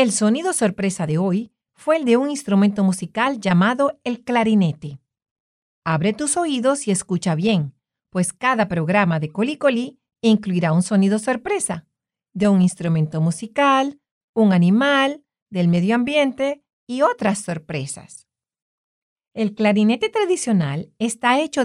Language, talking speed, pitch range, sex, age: English, 130 wpm, 170-245 Hz, female, 40-59